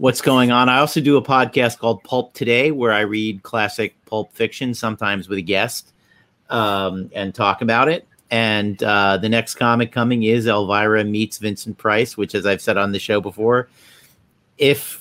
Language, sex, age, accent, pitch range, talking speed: English, male, 40-59, American, 105-135 Hz, 185 wpm